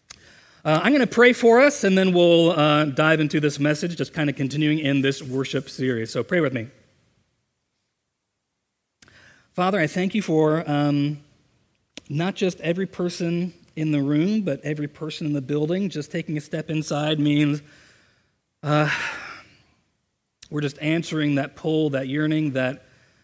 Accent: American